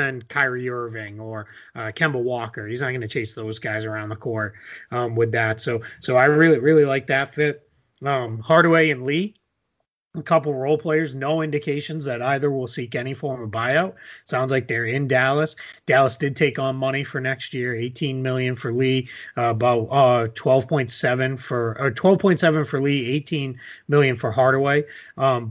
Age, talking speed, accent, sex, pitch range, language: 30-49, 190 wpm, American, male, 120-145 Hz, English